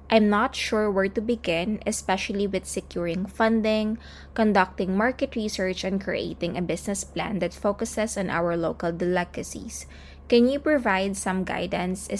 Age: 20-39